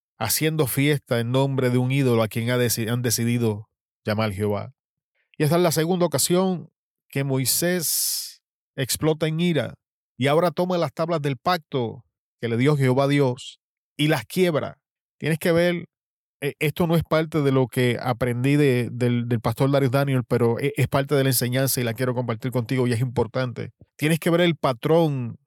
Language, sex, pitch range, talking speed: Spanish, male, 125-160 Hz, 180 wpm